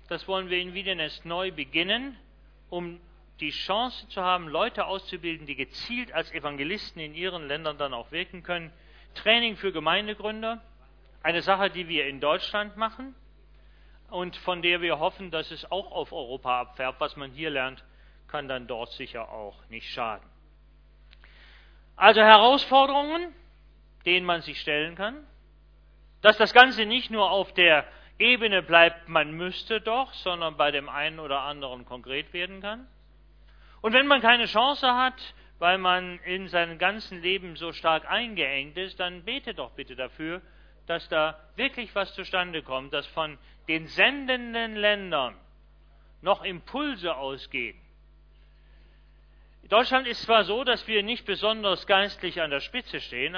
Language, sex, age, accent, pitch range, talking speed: German, male, 40-59, German, 155-220 Hz, 150 wpm